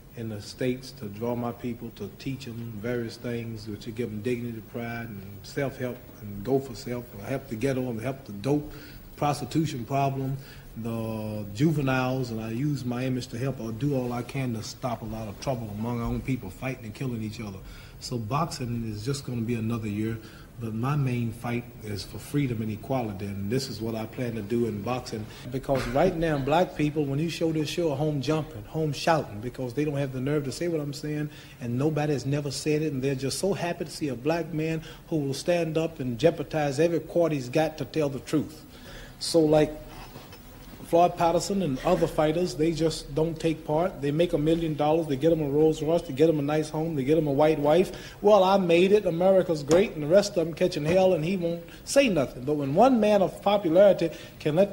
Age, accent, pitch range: 40-59, American, 120-165 Hz